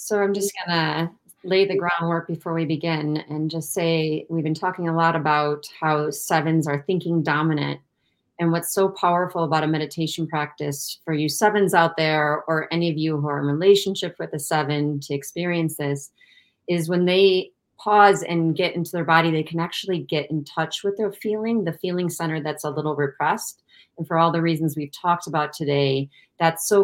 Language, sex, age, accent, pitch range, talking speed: English, female, 30-49, American, 150-180 Hz, 195 wpm